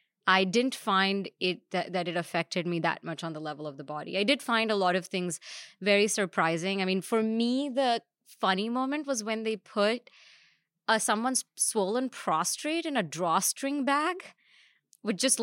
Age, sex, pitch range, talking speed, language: 20-39, female, 180-235 Hz, 185 wpm, English